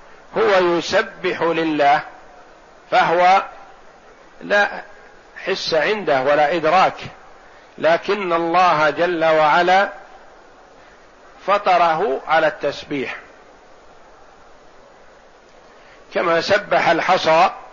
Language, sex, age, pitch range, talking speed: Arabic, male, 50-69, 145-180 Hz, 65 wpm